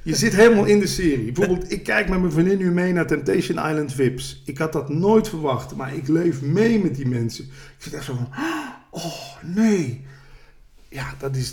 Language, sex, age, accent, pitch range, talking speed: Dutch, male, 50-69, Dutch, 135-185 Hz, 210 wpm